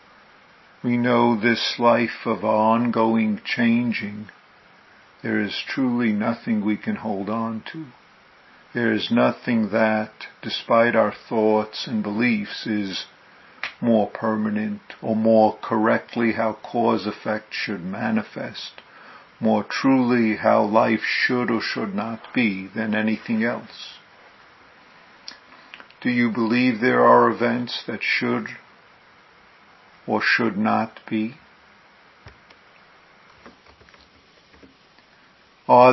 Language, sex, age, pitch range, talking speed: English, male, 50-69, 110-125 Hz, 100 wpm